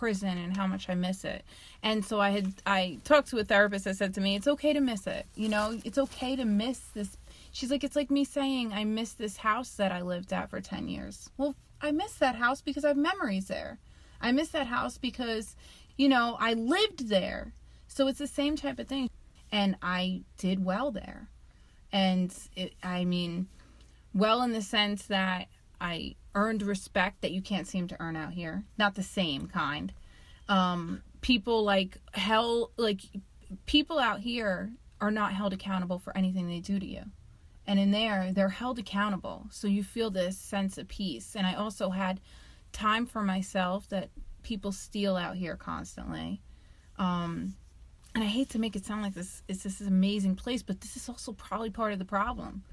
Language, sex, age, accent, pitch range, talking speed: English, female, 30-49, American, 185-230 Hz, 195 wpm